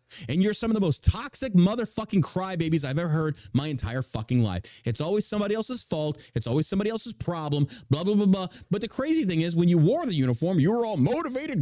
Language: English